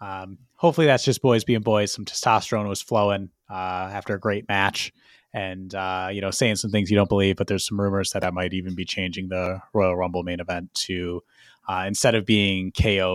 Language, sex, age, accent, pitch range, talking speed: English, male, 30-49, American, 95-110 Hz, 215 wpm